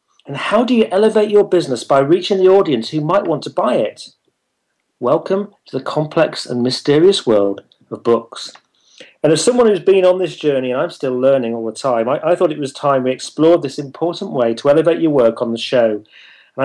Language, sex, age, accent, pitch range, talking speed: English, male, 40-59, British, 130-175 Hz, 215 wpm